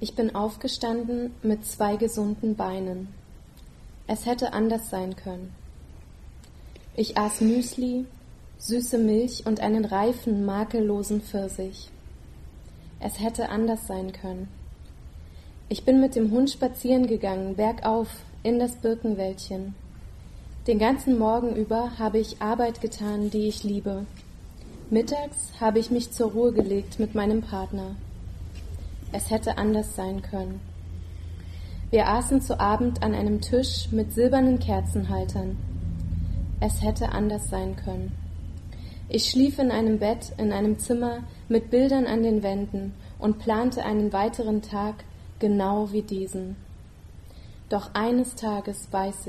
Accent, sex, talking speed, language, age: German, female, 125 wpm, English, 20-39